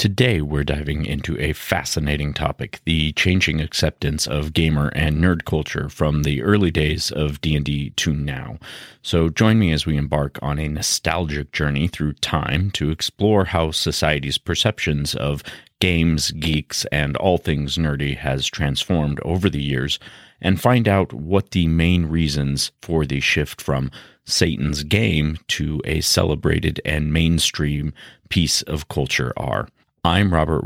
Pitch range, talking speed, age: 75-85 Hz, 150 wpm, 40-59